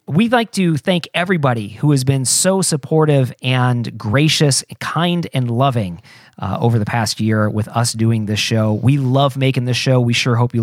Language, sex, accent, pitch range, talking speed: English, male, American, 110-145 Hz, 190 wpm